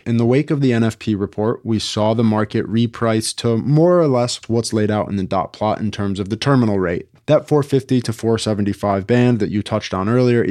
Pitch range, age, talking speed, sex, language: 105-125 Hz, 20-39, 225 wpm, male, English